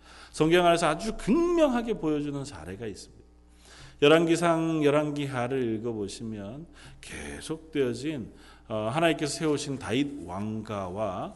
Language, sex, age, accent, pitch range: Korean, male, 40-59, native, 110-155 Hz